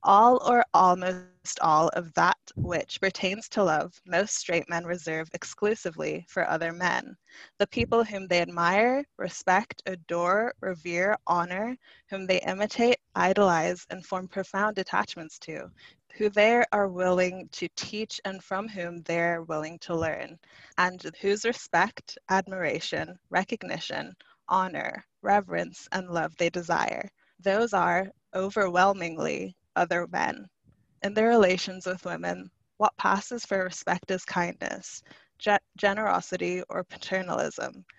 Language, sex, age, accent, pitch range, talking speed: English, female, 20-39, American, 175-200 Hz, 125 wpm